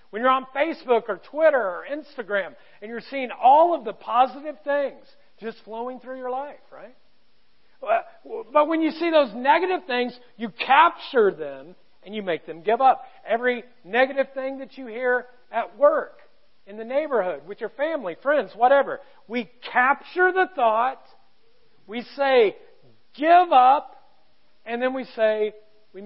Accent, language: American, English